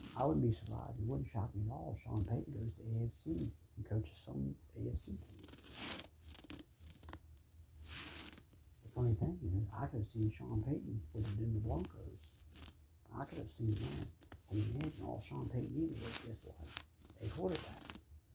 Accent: American